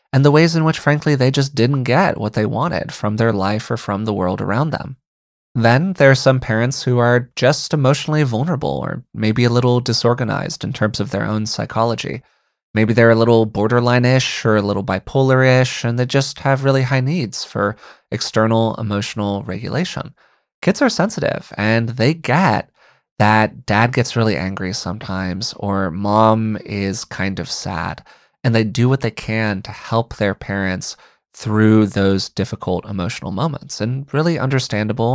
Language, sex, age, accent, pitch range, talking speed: English, male, 20-39, American, 105-130 Hz, 170 wpm